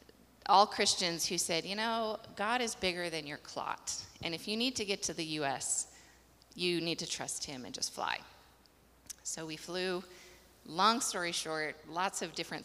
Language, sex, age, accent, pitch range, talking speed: English, female, 30-49, American, 155-185 Hz, 180 wpm